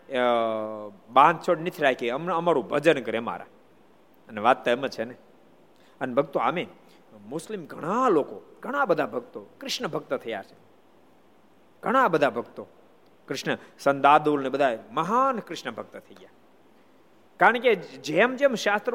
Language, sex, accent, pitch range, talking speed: Gujarati, male, native, 130-180 Hz, 40 wpm